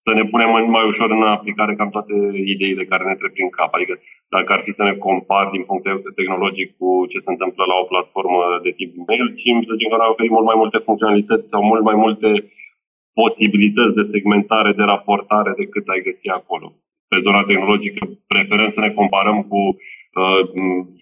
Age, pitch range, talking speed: 30-49, 100-115 Hz, 195 wpm